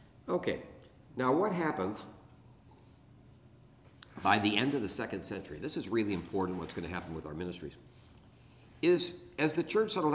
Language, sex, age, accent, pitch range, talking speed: English, male, 60-79, American, 95-130 Hz, 160 wpm